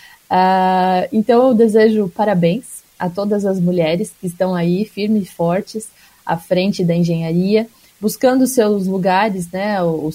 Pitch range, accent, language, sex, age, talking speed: 175-215 Hz, Brazilian, Portuguese, female, 20-39, 135 wpm